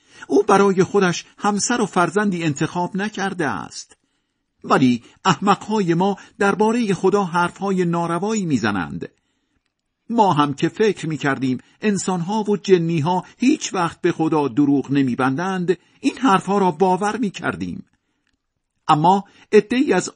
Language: Persian